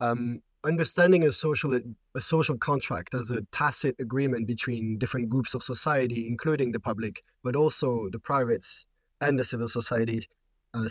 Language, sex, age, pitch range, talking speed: English, male, 30-49, 120-150 Hz, 155 wpm